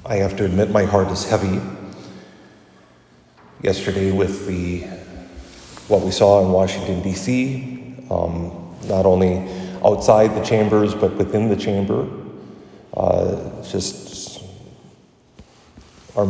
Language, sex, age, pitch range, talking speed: English, male, 40-59, 90-105 Hz, 110 wpm